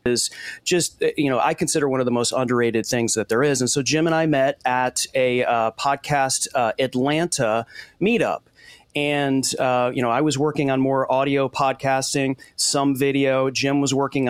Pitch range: 120-145 Hz